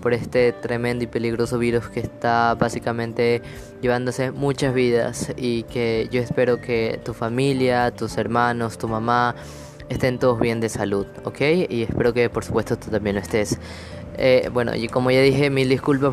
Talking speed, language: 170 wpm, Spanish